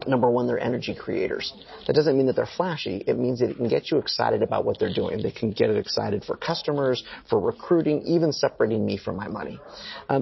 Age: 30-49